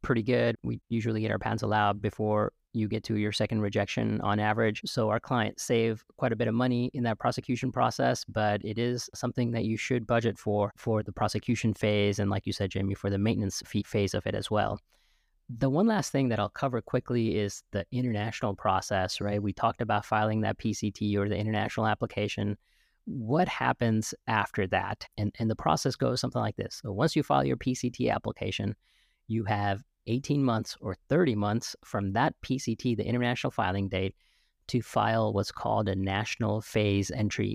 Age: 30-49